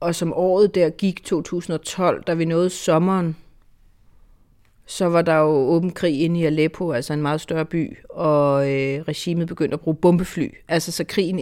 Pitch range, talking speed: 140-170 Hz, 180 wpm